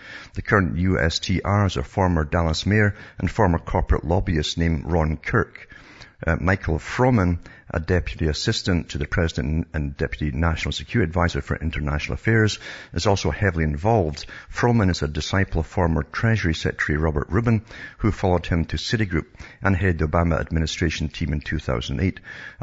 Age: 60-79